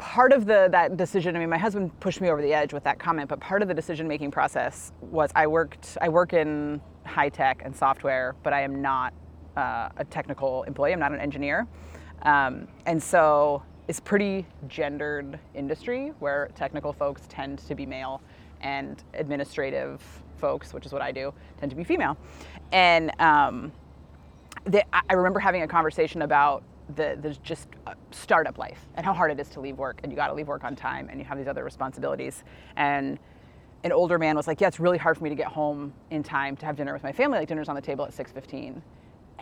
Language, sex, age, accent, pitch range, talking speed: English, female, 30-49, American, 140-190 Hz, 205 wpm